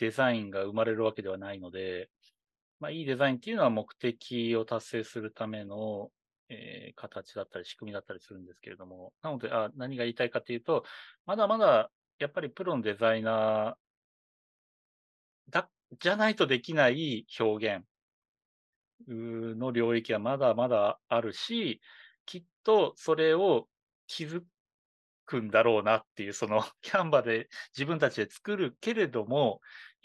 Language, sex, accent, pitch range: Japanese, male, native, 110-150 Hz